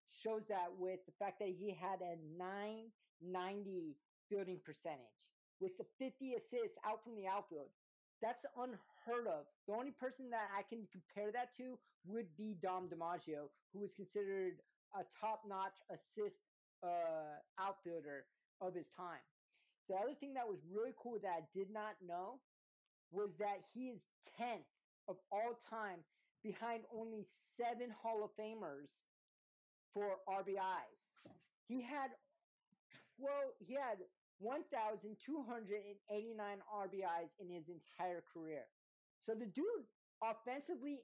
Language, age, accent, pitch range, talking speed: English, 40-59, American, 185-230 Hz, 140 wpm